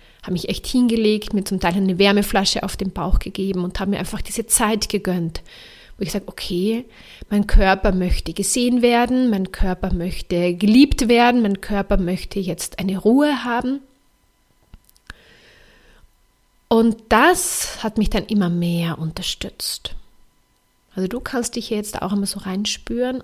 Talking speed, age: 150 wpm, 30-49